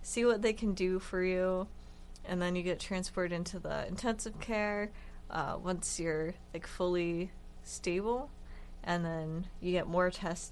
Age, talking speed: 20-39, 160 wpm